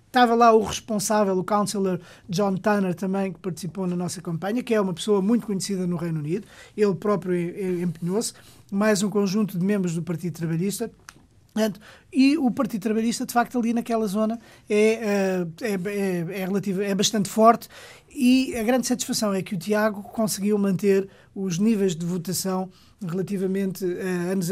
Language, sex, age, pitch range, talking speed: Portuguese, male, 20-39, 185-220 Hz, 165 wpm